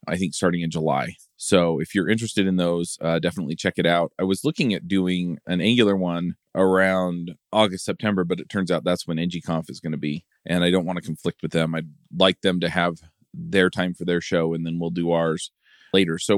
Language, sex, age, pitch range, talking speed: English, male, 30-49, 85-95 Hz, 230 wpm